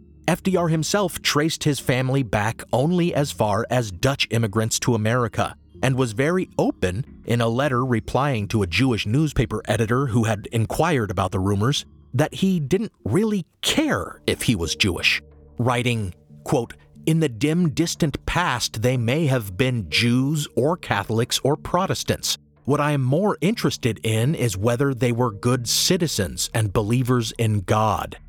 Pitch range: 110-150 Hz